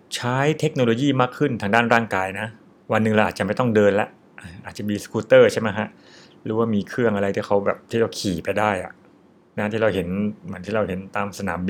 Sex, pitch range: male, 100-125 Hz